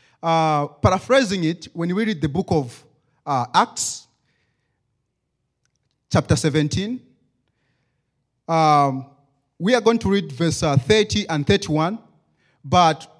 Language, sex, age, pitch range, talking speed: English, male, 30-49, 125-165 Hz, 115 wpm